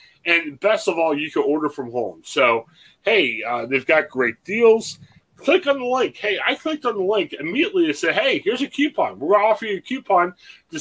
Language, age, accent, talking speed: English, 30-49, American, 230 wpm